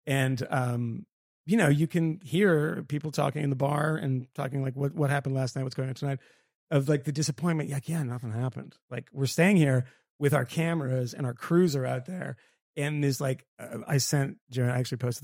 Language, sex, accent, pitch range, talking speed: English, male, American, 125-155 Hz, 220 wpm